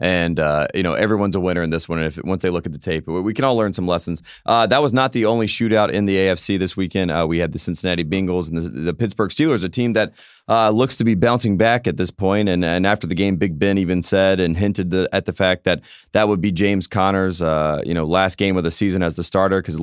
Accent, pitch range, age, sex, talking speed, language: American, 90-110 Hz, 30-49, male, 280 wpm, English